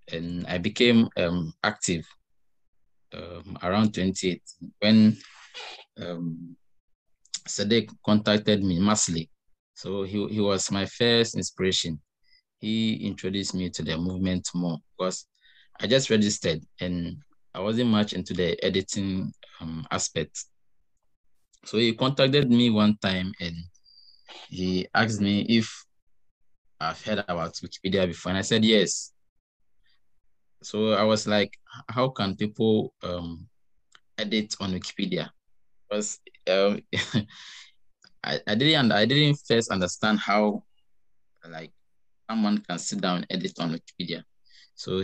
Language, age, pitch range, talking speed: English, 20-39, 90-110 Hz, 125 wpm